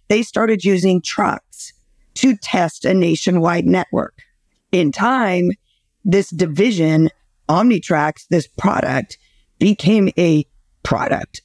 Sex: female